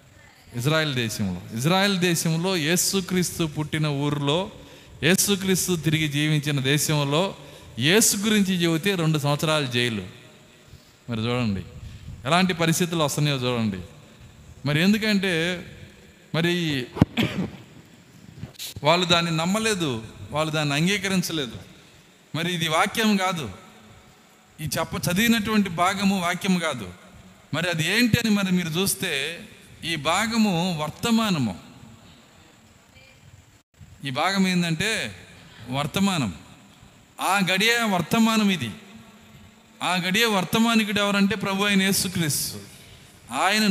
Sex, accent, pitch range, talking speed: male, native, 145-195 Hz, 90 wpm